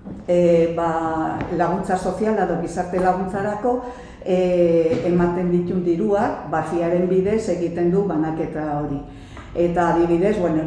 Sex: female